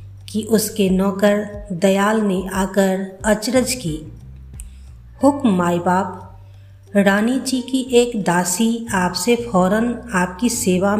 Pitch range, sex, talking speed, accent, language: 170-230 Hz, female, 110 wpm, native, Hindi